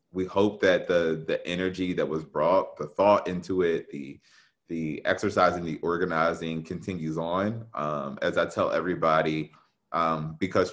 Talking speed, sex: 150 wpm, male